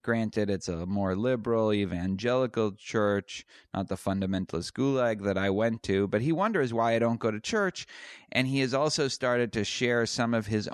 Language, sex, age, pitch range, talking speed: English, male, 30-49, 95-120 Hz, 190 wpm